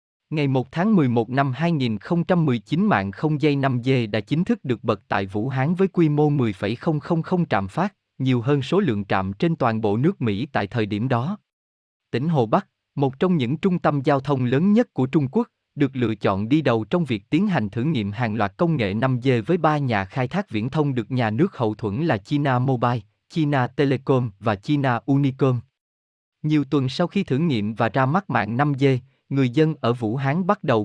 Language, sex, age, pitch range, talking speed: Vietnamese, male, 20-39, 115-155 Hz, 210 wpm